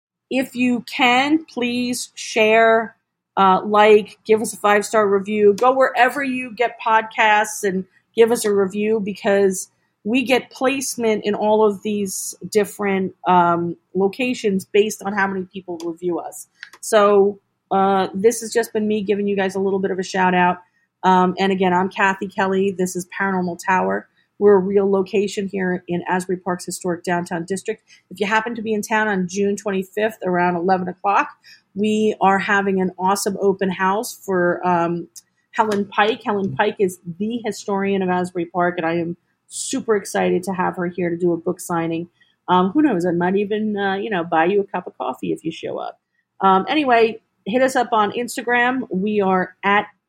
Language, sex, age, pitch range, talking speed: English, female, 40-59, 185-215 Hz, 185 wpm